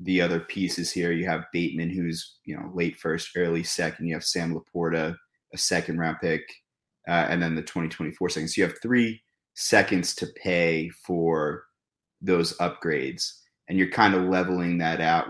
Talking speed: 175 wpm